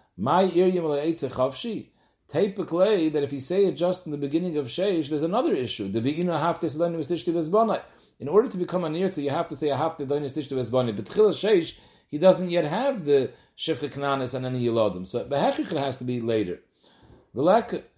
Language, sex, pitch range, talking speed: English, male, 130-175 Hz, 215 wpm